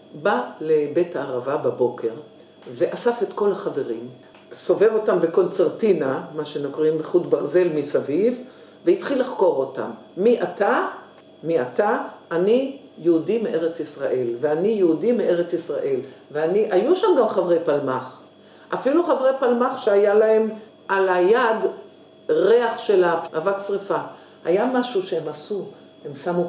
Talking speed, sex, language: 120 wpm, female, Hebrew